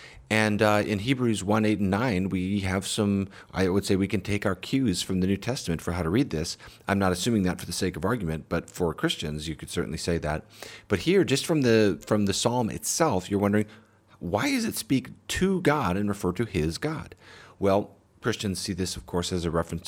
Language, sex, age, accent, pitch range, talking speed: English, male, 40-59, American, 90-110 Hz, 225 wpm